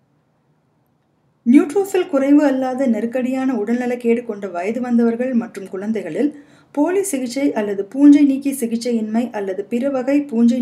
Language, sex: Tamil, female